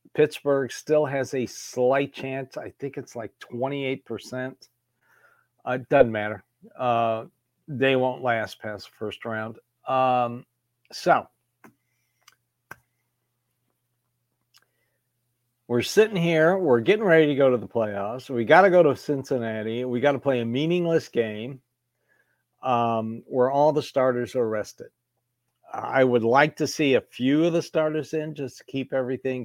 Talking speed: 145 wpm